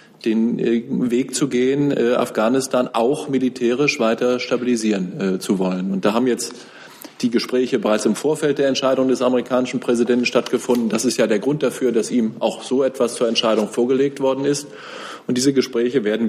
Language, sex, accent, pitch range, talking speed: German, male, German, 110-130 Hz, 170 wpm